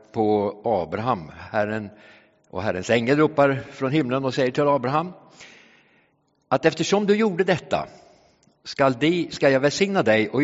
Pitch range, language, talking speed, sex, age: 115-165 Hz, English, 145 wpm, male, 60-79